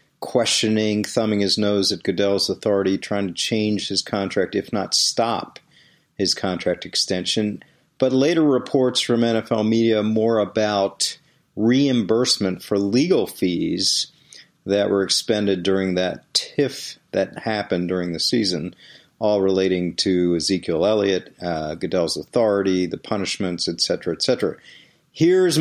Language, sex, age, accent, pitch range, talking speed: English, male, 40-59, American, 100-135 Hz, 125 wpm